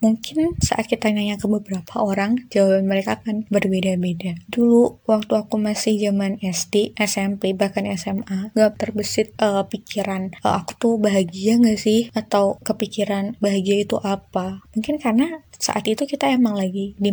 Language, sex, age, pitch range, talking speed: Indonesian, female, 20-39, 185-215 Hz, 150 wpm